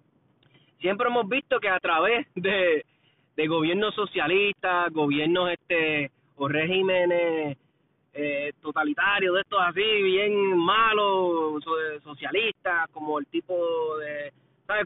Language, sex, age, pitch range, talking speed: Spanish, male, 30-49, 160-245 Hz, 115 wpm